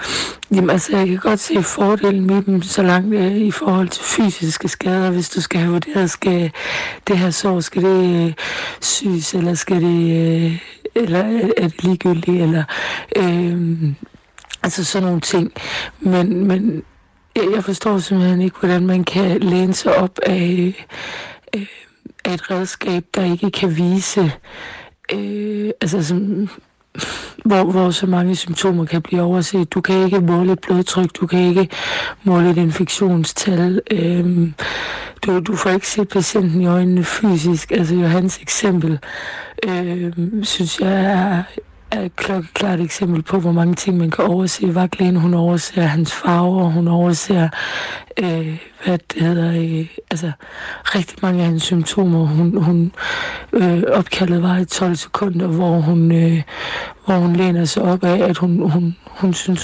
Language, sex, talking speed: Danish, female, 155 wpm